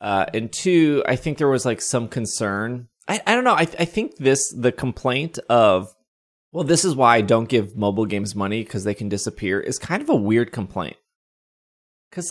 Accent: American